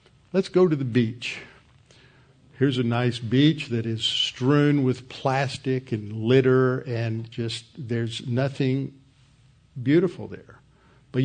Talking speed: 125 wpm